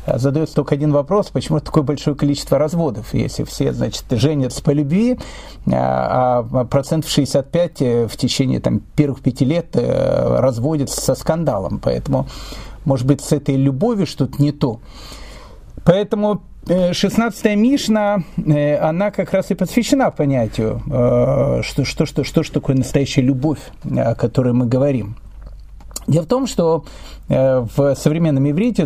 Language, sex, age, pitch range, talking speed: Russian, male, 40-59, 130-180 Hz, 135 wpm